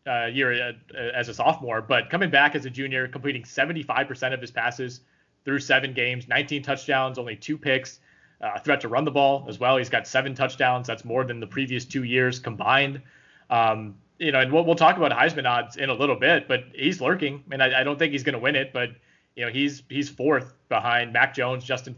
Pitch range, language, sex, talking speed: 125-145 Hz, English, male, 225 wpm